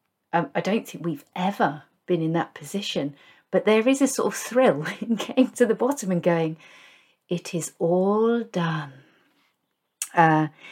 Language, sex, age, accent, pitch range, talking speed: English, female, 40-59, British, 175-250 Hz, 160 wpm